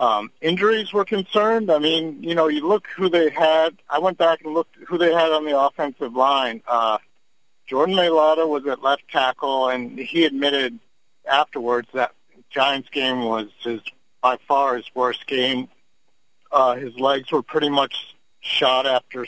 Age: 50-69